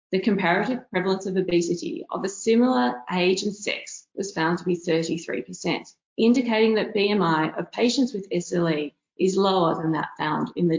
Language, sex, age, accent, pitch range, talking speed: English, female, 30-49, Australian, 170-230 Hz, 165 wpm